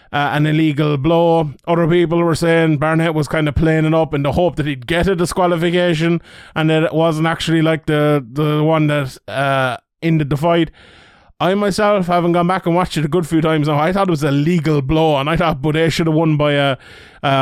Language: English